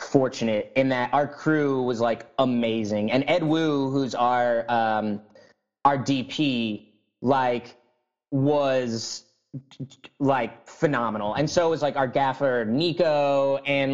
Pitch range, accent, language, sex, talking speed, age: 120-150 Hz, American, English, male, 135 wpm, 20-39